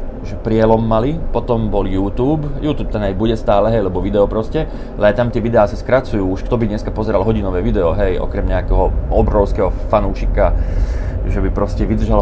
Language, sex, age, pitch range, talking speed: Slovak, male, 30-49, 95-120 Hz, 180 wpm